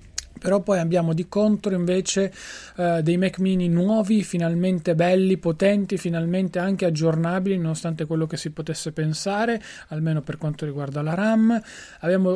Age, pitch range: 20-39, 160-190 Hz